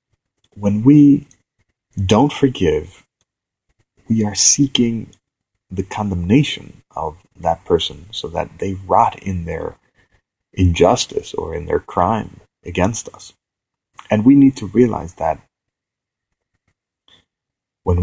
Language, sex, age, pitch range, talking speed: English, male, 40-59, 90-115 Hz, 105 wpm